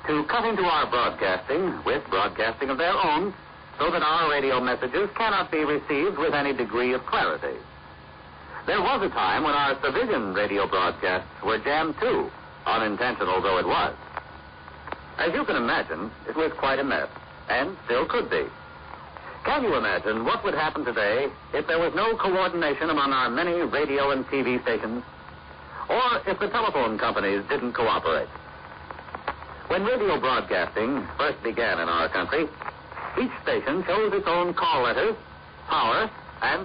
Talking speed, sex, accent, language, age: 155 wpm, male, American, English, 60-79